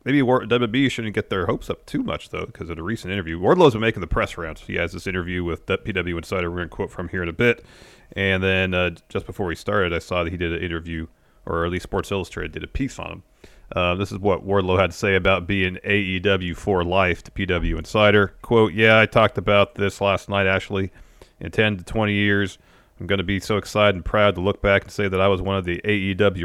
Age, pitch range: 30-49, 90-105 Hz